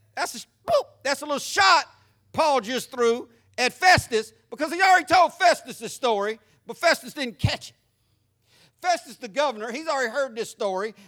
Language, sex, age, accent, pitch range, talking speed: English, male, 50-69, American, 175-260 Hz, 160 wpm